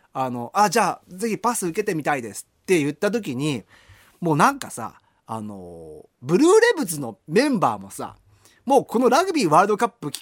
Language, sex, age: Japanese, male, 30-49